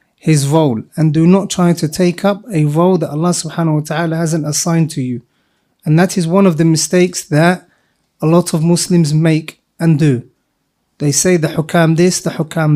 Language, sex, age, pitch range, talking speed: English, male, 30-49, 155-185 Hz, 200 wpm